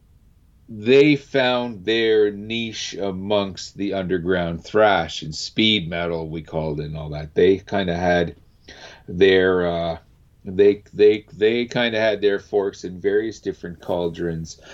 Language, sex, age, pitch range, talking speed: English, male, 40-59, 85-115 Hz, 145 wpm